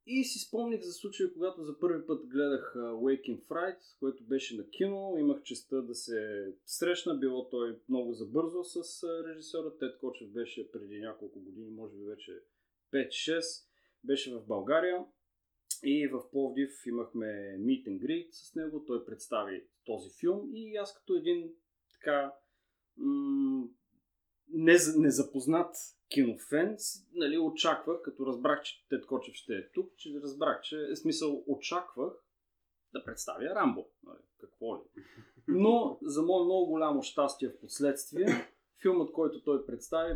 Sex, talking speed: male, 140 wpm